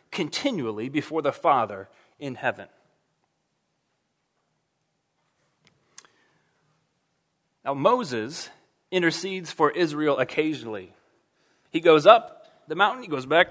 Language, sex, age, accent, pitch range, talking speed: English, male, 30-49, American, 145-200 Hz, 90 wpm